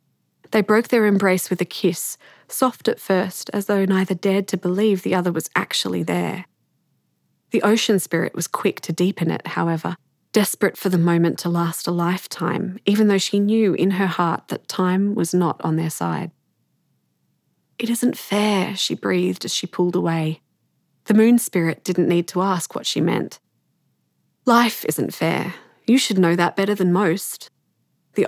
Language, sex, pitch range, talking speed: English, female, 175-215 Hz, 175 wpm